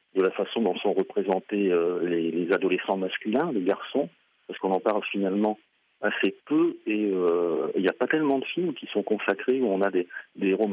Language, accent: French, French